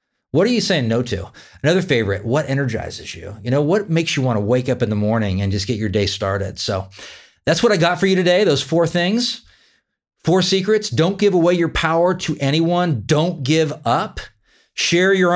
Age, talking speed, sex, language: 40-59, 210 wpm, male, English